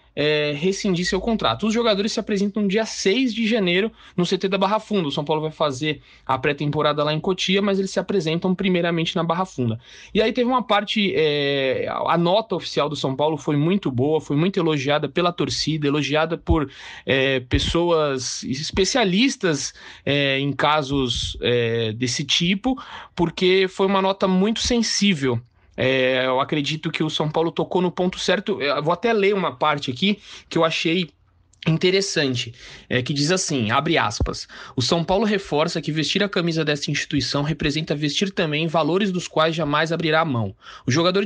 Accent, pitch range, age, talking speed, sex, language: Brazilian, 145-190 Hz, 20-39, 170 wpm, male, Portuguese